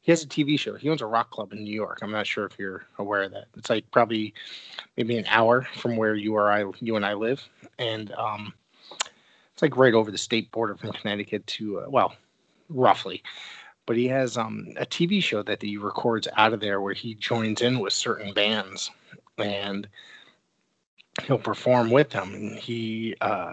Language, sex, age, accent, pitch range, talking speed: English, male, 30-49, American, 105-125 Hz, 200 wpm